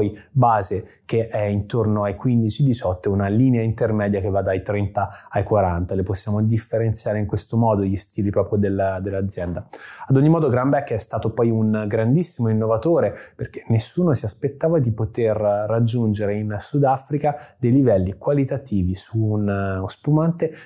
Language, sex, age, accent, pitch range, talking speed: Italian, male, 20-39, native, 105-125 Hz, 150 wpm